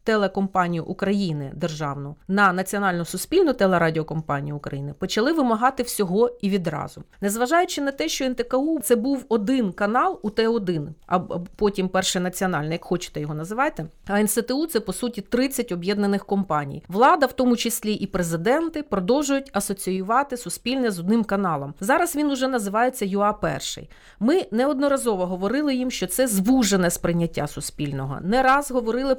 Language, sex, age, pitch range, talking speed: Ukrainian, female, 40-59, 180-245 Hz, 140 wpm